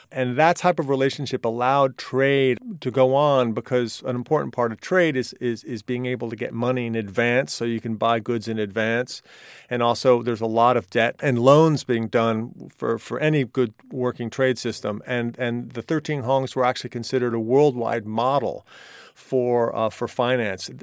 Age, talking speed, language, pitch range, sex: 40-59, 190 wpm, English, 115-135 Hz, male